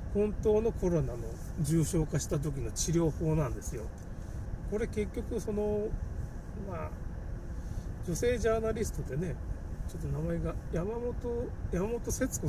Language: Japanese